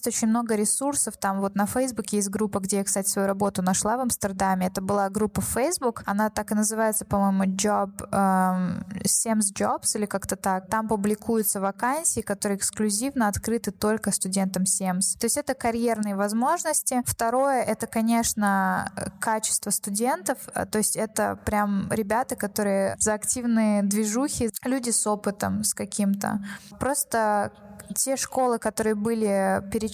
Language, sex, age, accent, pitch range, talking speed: Russian, female, 20-39, native, 195-230 Hz, 145 wpm